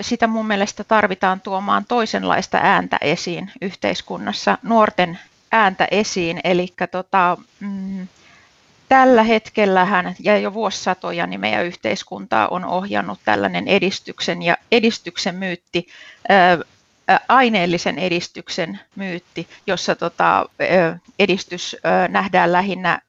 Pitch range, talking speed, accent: 175-210 Hz, 110 wpm, native